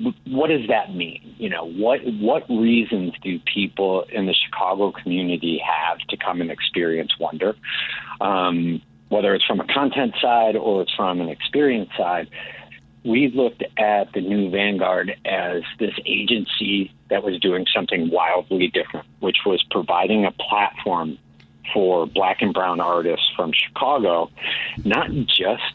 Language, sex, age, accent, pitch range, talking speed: English, male, 50-69, American, 80-105 Hz, 145 wpm